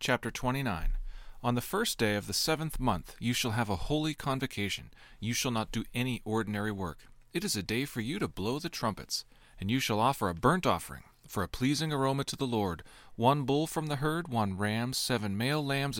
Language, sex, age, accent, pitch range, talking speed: English, male, 40-59, American, 105-140 Hz, 215 wpm